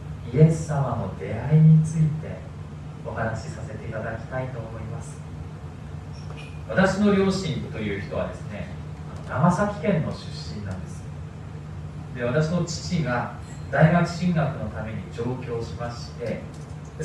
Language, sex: Japanese, male